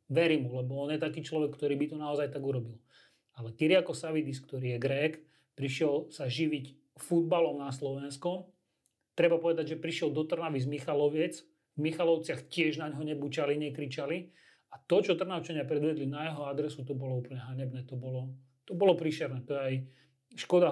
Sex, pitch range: male, 140-165 Hz